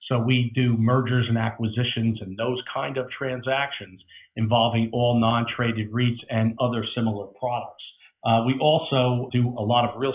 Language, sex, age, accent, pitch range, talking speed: English, male, 50-69, American, 110-135 Hz, 160 wpm